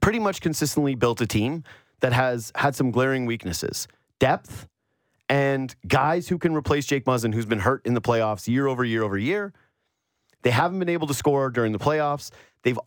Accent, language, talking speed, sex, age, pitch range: American, English, 190 wpm, male, 30-49, 120-155 Hz